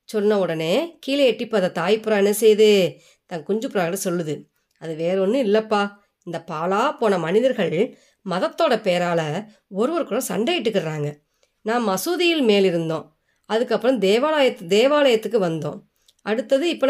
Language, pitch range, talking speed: Tamil, 175-265 Hz, 130 wpm